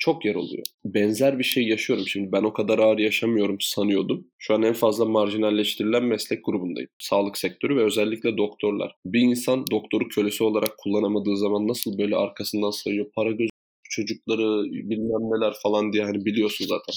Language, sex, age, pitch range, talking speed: Turkish, male, 20-39, 105-130 Hz, 165 wpm